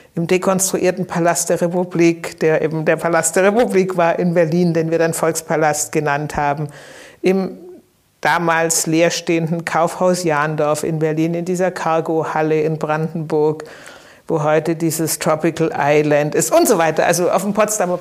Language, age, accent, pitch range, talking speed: German, 60-79, German, 160-175 Hz, 150 wpm